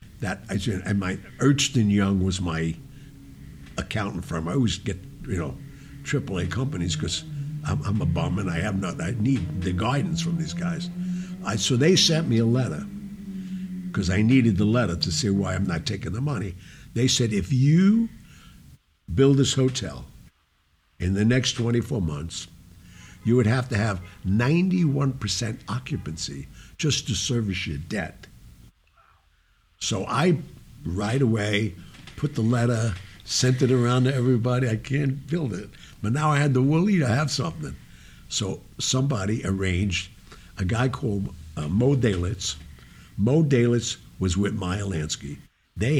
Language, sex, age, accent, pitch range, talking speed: English, male, 60-79, American, 90-135 Hz, 155 wpm